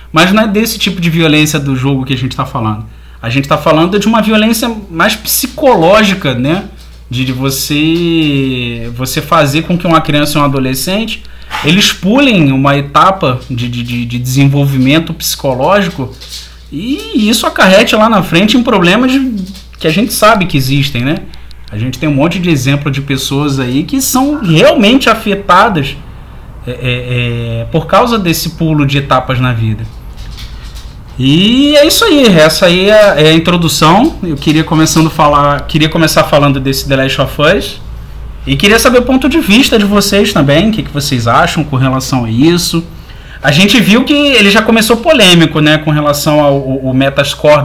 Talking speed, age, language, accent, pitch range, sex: 170 wpm, 20-39, Portuguese, Brazilian, 135-205 Hz, male